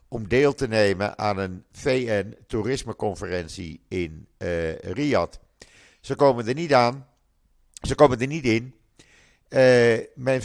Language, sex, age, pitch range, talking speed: Dutch, male, 50-69, 95-125 Hz, 125 wpm